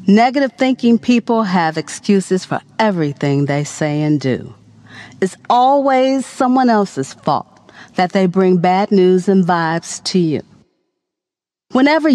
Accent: American